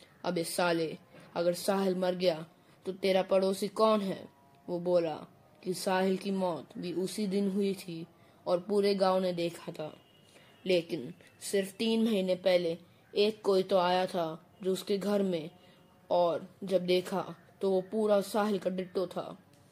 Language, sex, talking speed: Hindi, female, 160 wpm